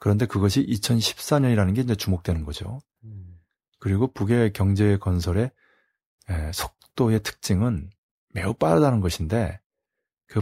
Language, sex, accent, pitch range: Korean, male, native, 95-120 Hz